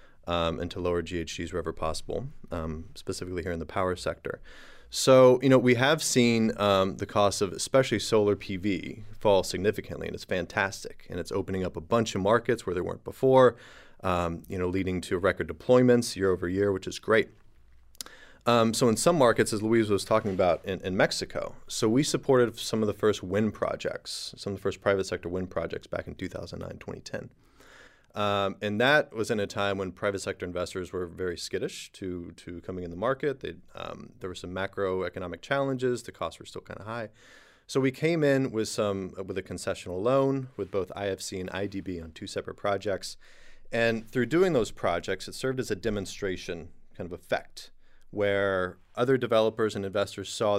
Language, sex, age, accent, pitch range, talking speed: English, male, 30-49, American, 95-115 Hz, 195 wpm